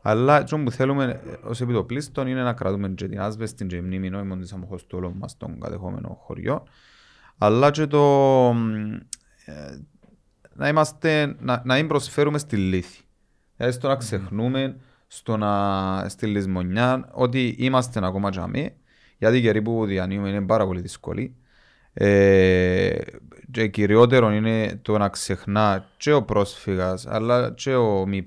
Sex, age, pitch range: male, 30-49, 100-130 Hz